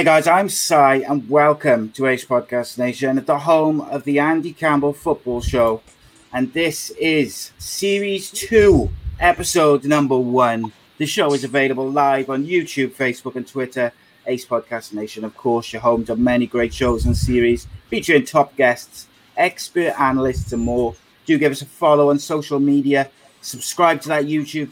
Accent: British